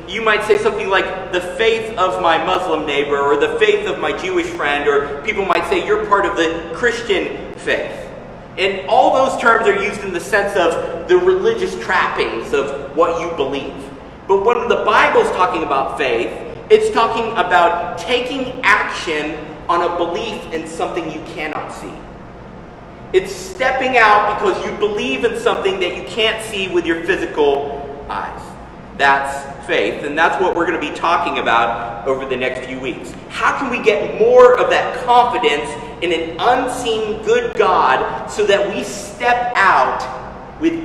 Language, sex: English, male